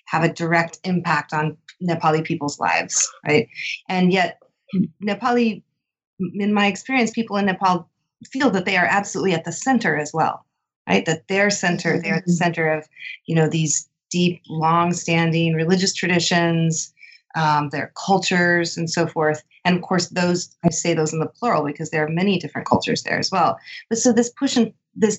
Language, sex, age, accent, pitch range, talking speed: English, female, 30-49, American, 160-195 Hz, 180 wpm